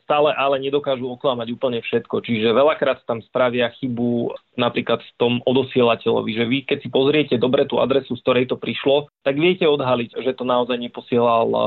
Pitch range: 120-140 Hz